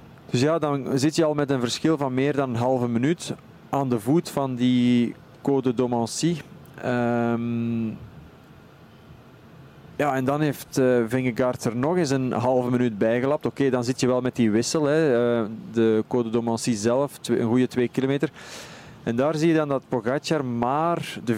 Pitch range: 120-145 Hz